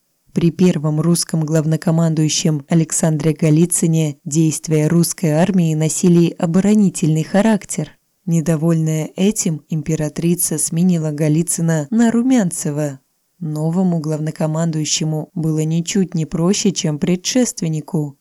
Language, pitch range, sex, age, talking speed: Russian, 155-185 Hz, female, 20-39, 90 wpm